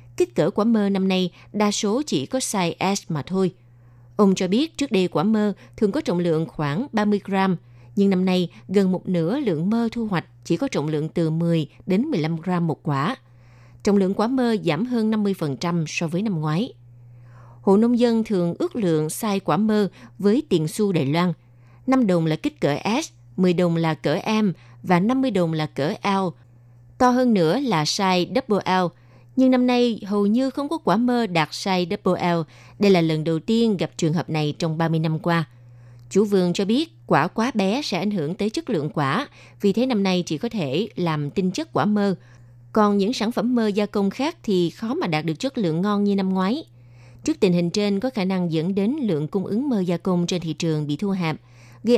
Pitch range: 155-210 Hz